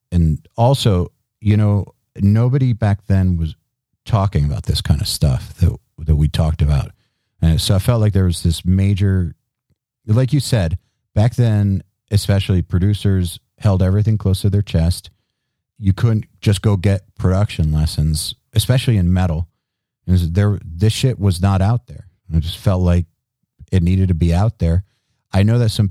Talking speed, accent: 175 wpm, American